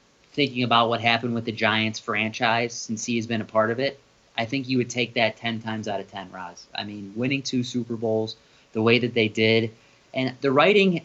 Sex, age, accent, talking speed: male, 30-49, American, 230 wpm